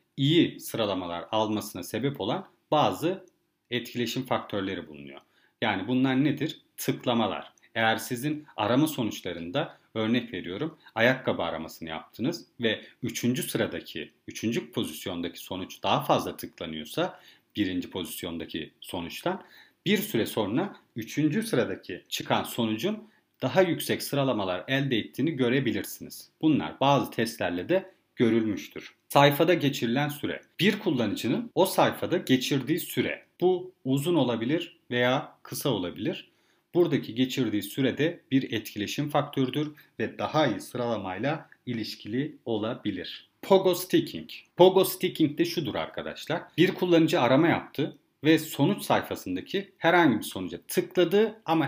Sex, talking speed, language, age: male, 115 wpm, Turkish, 40-59